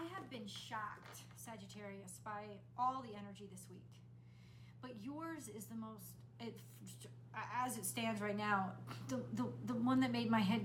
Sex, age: female, 30-49